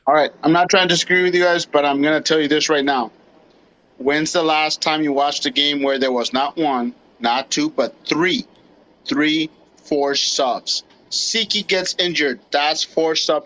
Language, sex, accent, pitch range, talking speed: English, male, American, 150-195 Hz, 200 wpm